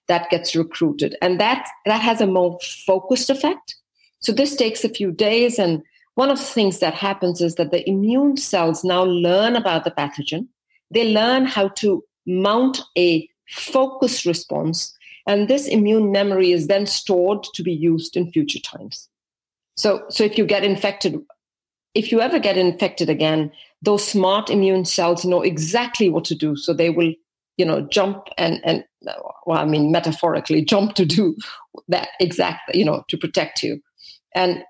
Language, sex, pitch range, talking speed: English, female, 170-210 Hz, 170 wpm